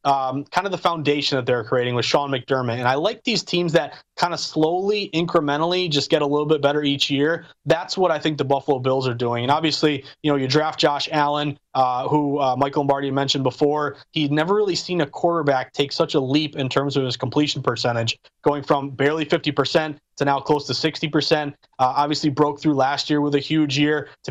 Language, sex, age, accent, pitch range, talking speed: English, male, 20-39, American, 145-170 Hz, 220 wpm